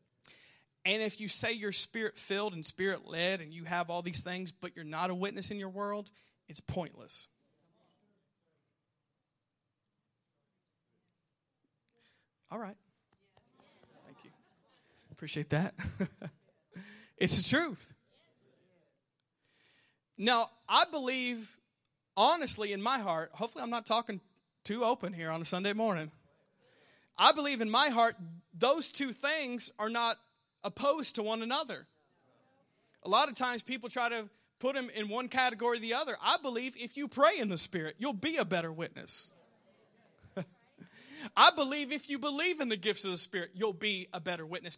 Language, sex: English, male